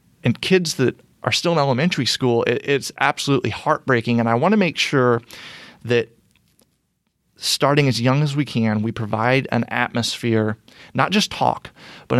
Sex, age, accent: male, 30-49, American